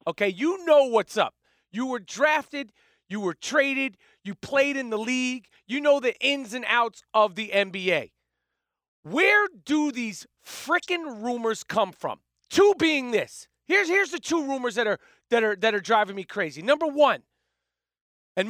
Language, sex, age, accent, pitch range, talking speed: English, male, 40-59, American, 225-295 Hz, 170 wpm